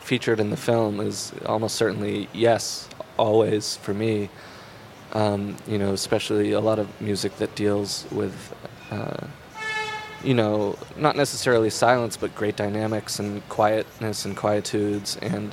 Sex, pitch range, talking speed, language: male, 105-115 Hz, 140 wpm, French